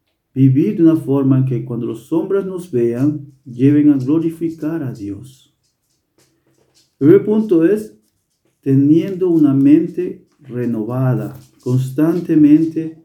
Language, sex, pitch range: German, male, 125-165 Hz